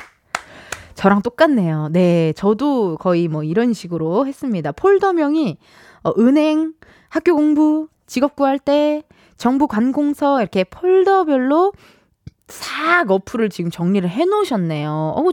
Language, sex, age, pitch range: Korean, female, 20-39, 200-330 Hz